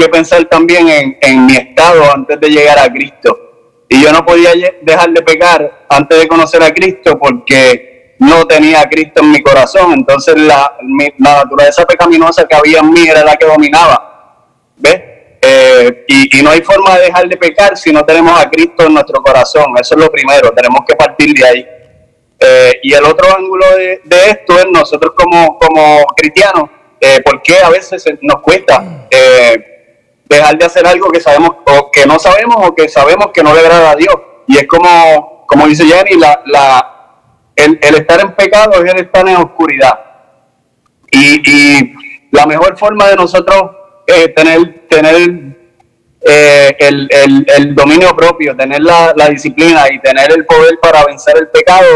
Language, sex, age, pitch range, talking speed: Spanish, male, 20-39, 150-195 Hz, 180 wpm